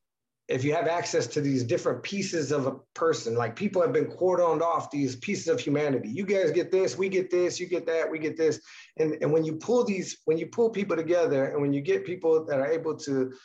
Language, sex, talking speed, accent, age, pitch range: English, male, 240 wpm, American, 30-49, 140-180 Hz